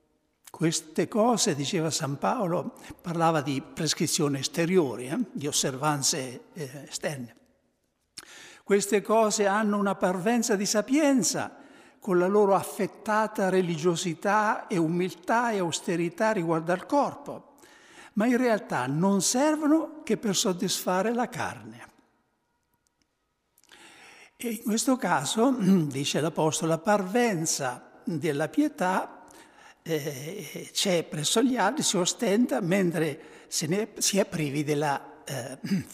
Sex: male